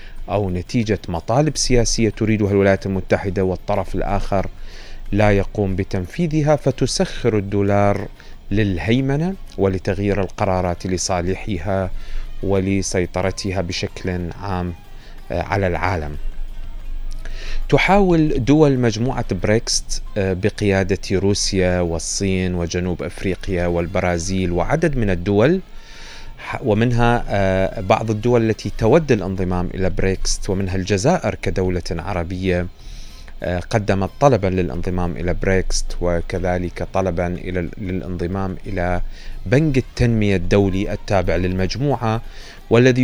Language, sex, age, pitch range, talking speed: Arabic, male, 30-49, 90-115 Hz, 90 wpm